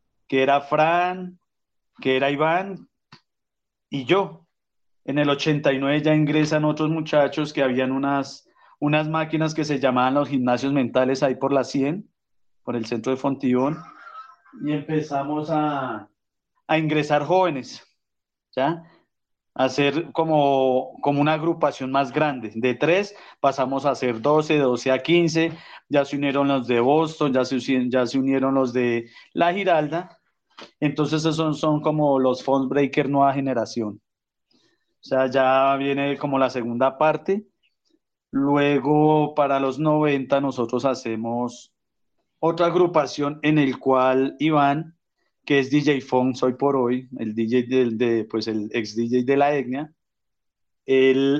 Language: Spanish